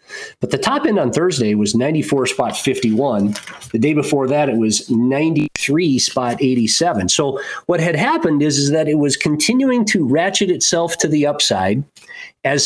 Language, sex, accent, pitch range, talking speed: English, male, American, 125-170 Hz, 170 wpm